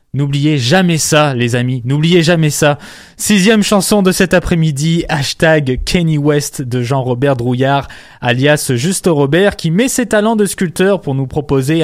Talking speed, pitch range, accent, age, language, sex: 155 wpm, 130-175 Hz, French, 20-39, French, male